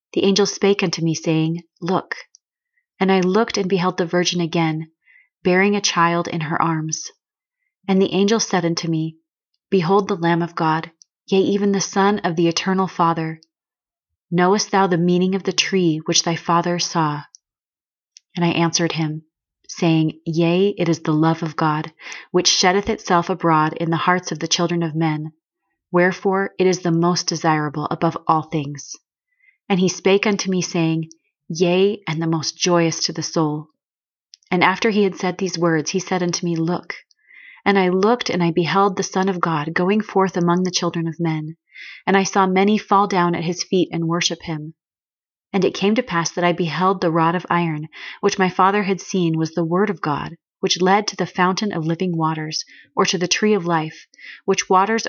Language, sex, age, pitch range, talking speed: English, female, 30-49, 165-195 Hz, 195 wpm